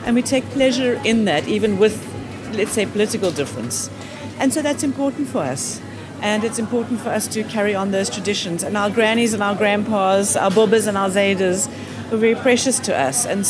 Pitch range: 195-245 Hz